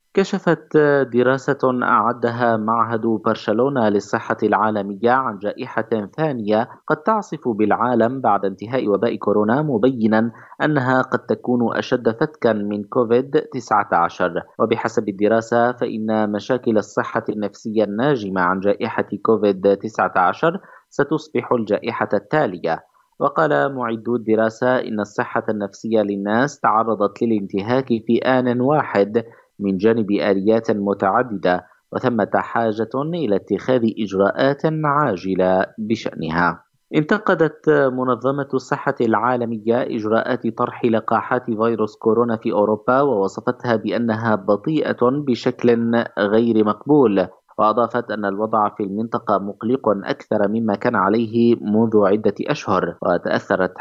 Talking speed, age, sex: 105 wpm, 30-49, male